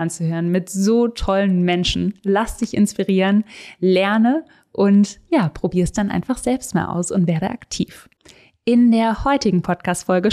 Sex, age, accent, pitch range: female, 20-39, German, 185-235 Hz